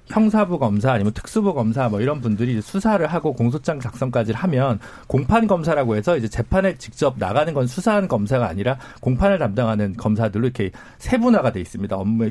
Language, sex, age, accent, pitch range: Korean, male, 40-59, native, 110-165 Hz